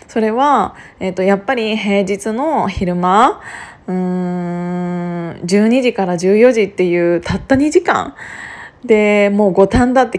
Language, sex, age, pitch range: Japanese, female, 20-39, 190-230 Hz